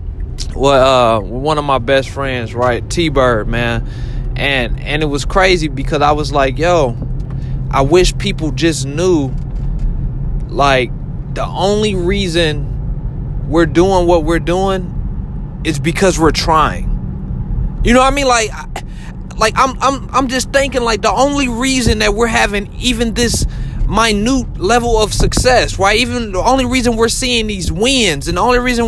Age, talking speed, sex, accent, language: 20-39, 160 wpm, male, American, English